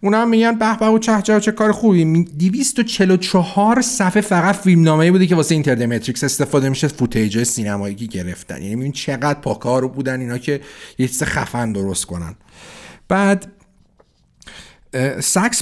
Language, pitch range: Persian, 125-190 Hz